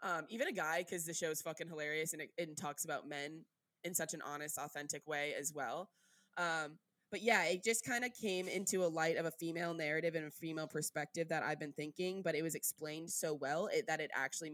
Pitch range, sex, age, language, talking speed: 165-215 Hz, female, 20-39, English, 230 wpm